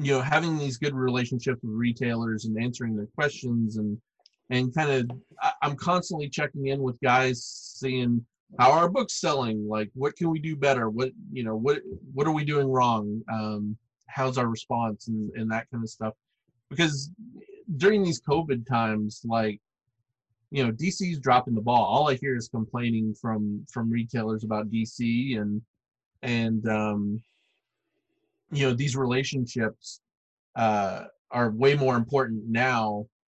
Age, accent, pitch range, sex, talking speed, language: 30-49, American, 110-135 Hz, male, 155 wpm, English